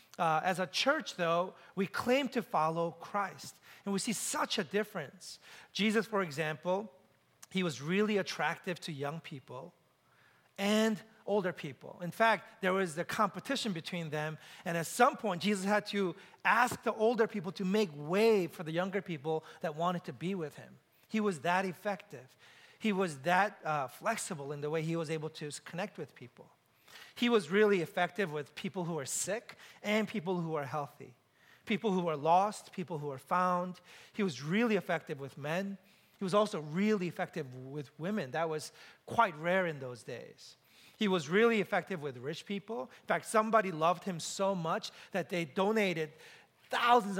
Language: English